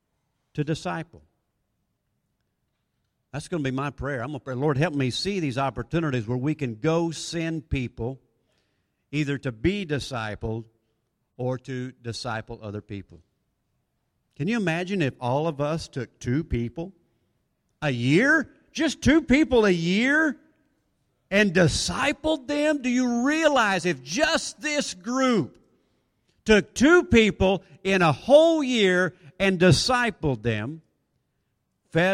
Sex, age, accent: male, 50-69, American